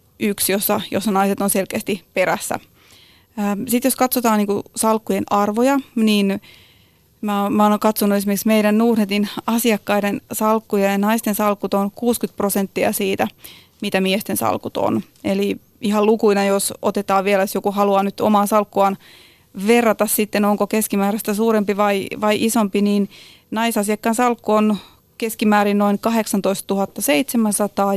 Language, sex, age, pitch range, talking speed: Finnish, female, 30-49, 200-225 Hz, 130 wpm